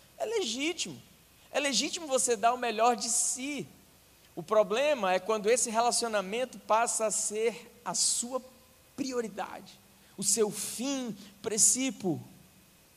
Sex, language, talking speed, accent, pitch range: male, Portuguese, 120 wpm, Brazilian, 195-240 Hz